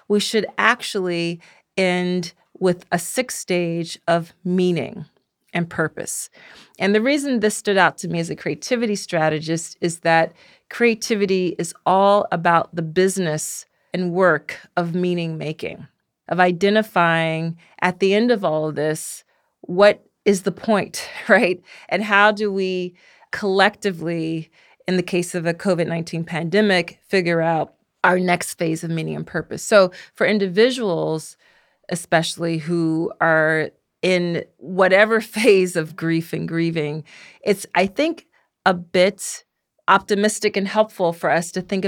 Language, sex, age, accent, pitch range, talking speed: English, female, 40-59, American, 165-195 Hz, 140 wpm